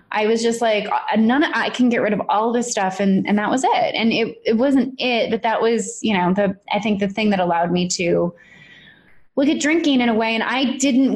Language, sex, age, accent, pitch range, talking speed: English, female, 20-39, American, 195-235 Hz, 250 wpm